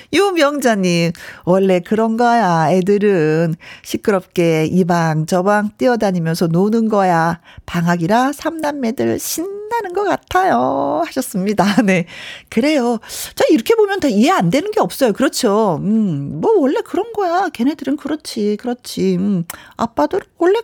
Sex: female